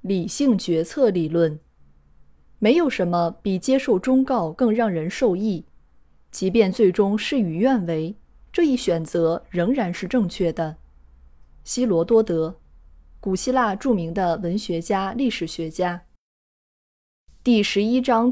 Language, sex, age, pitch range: Chinese, female, 20-39, 165-235 Hz